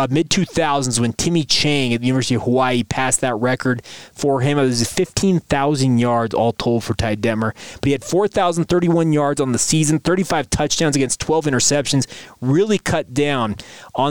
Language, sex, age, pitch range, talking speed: English, male, 20-39, 120-150 Hz, 175 wpm